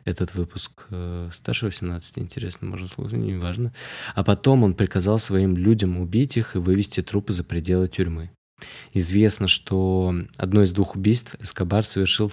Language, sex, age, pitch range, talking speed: Russian, male, 20-39, 90-105 Hz, 150 wpm